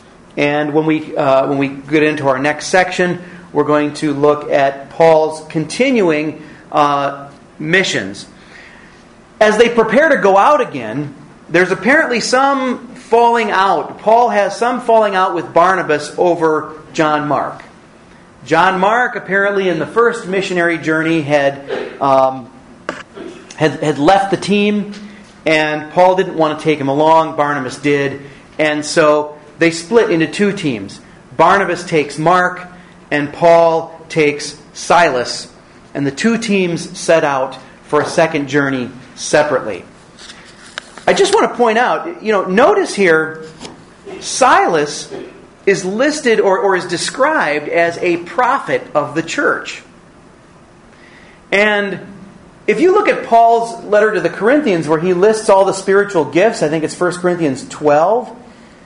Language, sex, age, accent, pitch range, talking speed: English, male, 40-59, American, 150-200 Hz, 140 wpm